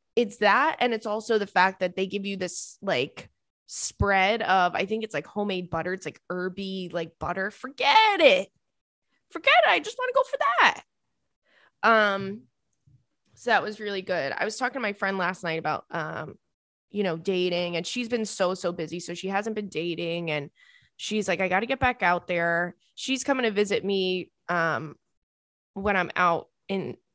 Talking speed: 190 wpm